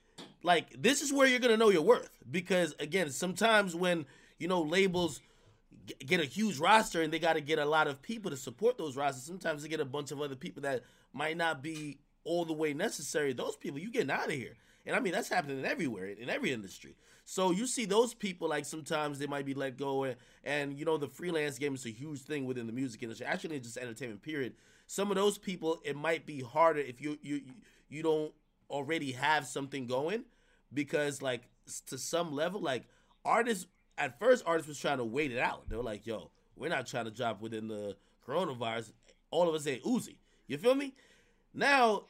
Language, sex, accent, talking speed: English, male, American, 220 wpm